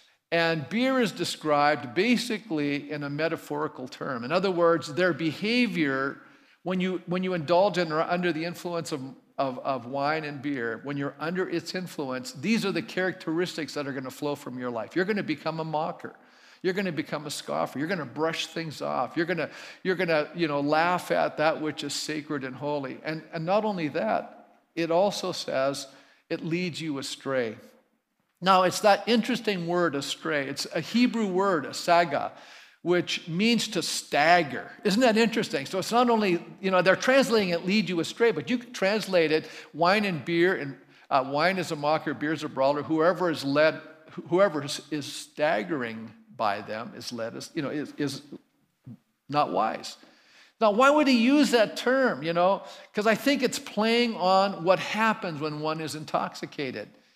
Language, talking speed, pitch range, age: English, 185 wpm, 150-195 Hz, 50-69